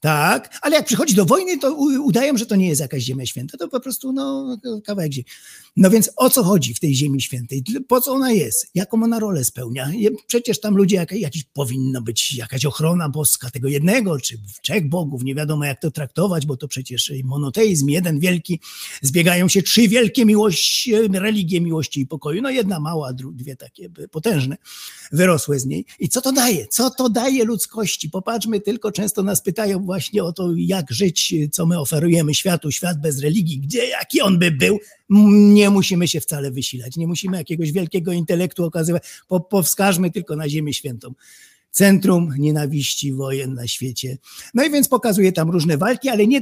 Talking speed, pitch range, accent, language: 185 wpm, 145-210 Hz, native, Polish